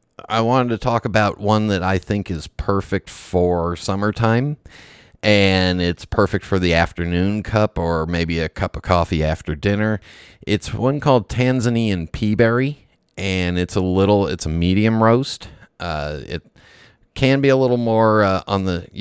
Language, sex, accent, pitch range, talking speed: English, male, American, 85-110 Hz, 160 wpm